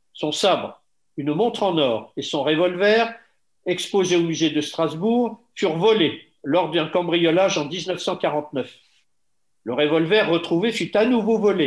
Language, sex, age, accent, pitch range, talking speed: French, male, 50-69, French, 150-200 Hz, 145 wpm